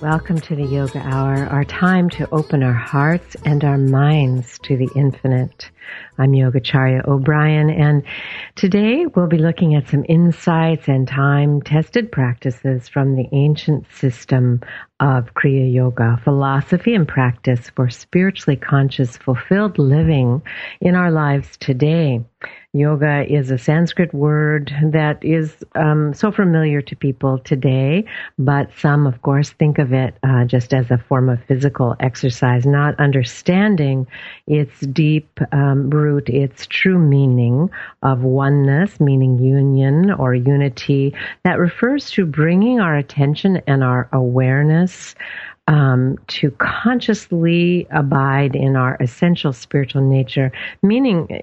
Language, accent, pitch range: English, American, 135-160 Hz